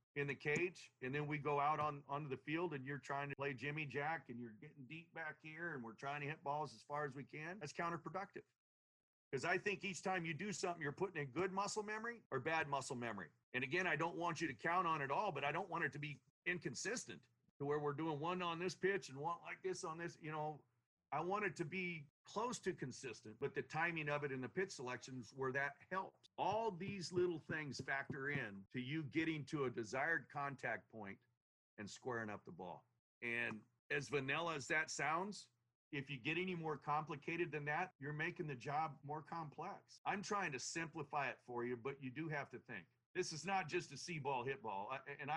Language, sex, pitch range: English, male, 135-170 Hz